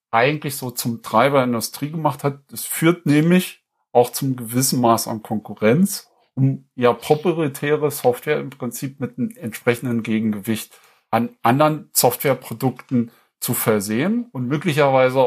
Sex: male